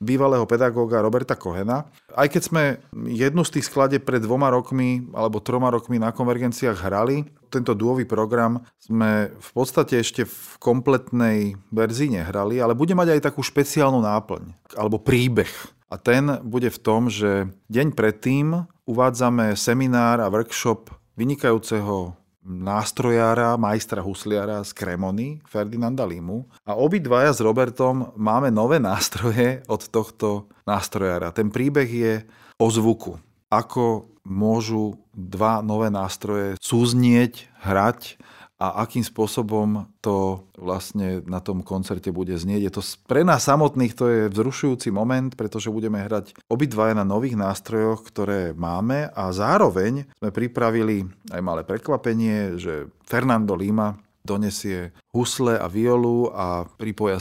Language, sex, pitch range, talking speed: Slovak, male, 105-125 Hz, 135 wpm